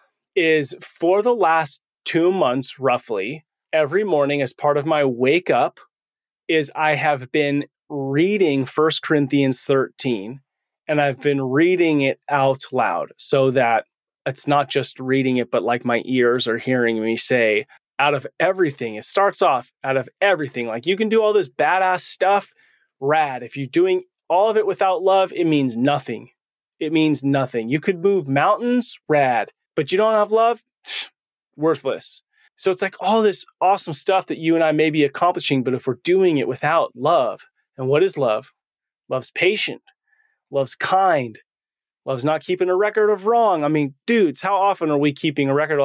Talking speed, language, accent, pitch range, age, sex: 175 wpm, English, American, 135-200 Hz, 30-49, male